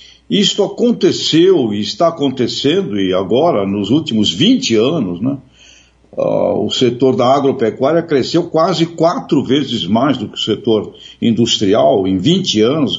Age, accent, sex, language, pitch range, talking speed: 60-79, Brazilian, male, Portuguese, 115-165 Hz, 135 wpm